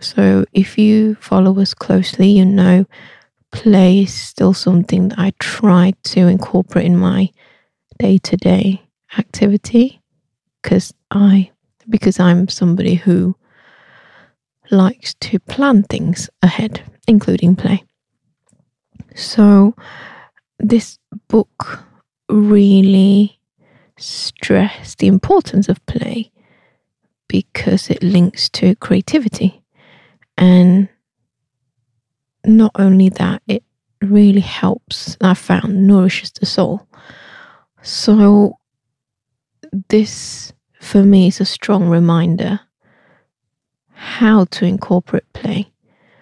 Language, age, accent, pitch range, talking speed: English, 20-39, British, 180-200 Hz, 90 wpm